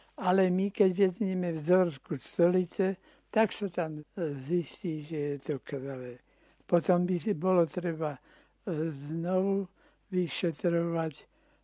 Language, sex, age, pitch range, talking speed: Slovak, male, 60-79, 155-185 Hz, 110 wpm